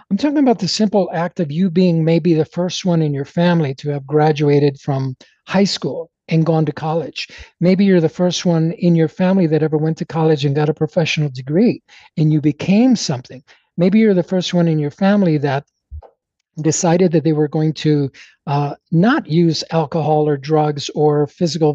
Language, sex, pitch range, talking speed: English, male, 155-190 Hz, 195 wpm